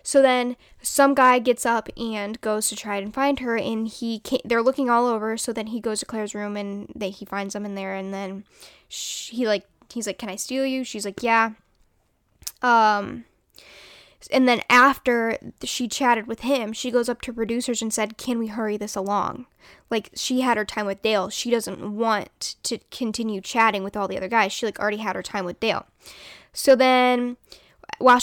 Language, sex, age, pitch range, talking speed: English, female, 10-29, 215-250 Hz, 205 wpm